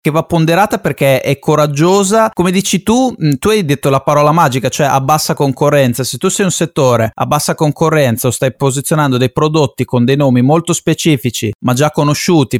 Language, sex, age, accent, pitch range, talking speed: Italian, male, 30-49, native, 120-150 Hz, 190 wpm